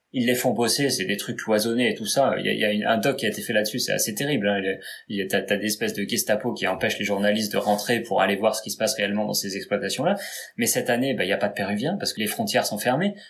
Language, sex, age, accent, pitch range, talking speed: French, male, 20-39, French, 105-135 Hz, 335 wpm